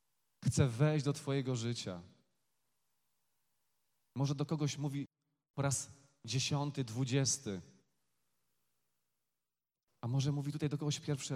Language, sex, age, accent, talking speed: Polish, male, 40-59, native, 105 wpm